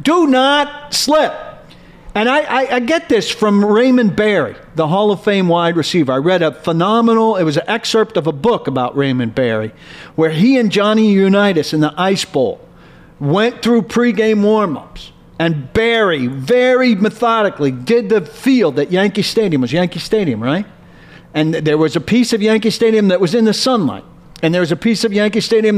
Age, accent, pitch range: 50-69, American, 170-230 Hz